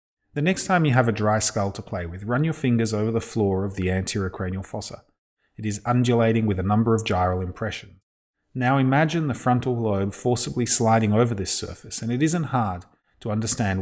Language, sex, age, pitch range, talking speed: English, male, 30-49, 95-120 Hz, 205 wpm